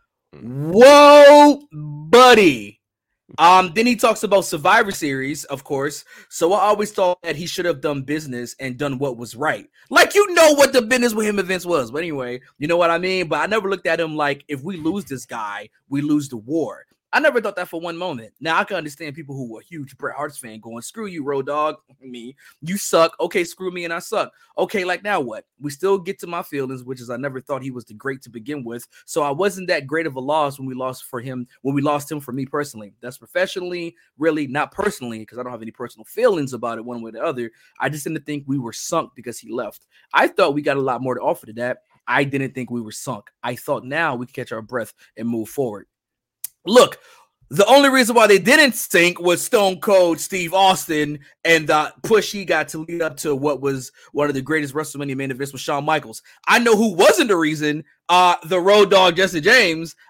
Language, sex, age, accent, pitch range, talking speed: English, male, 20-39, American, 135-190 Hz, 235 wpm